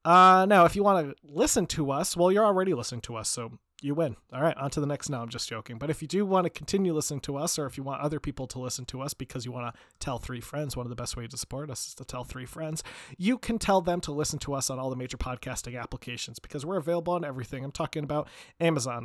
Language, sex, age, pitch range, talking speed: English, male, 30-49, 130-170 Hz, 285 wpm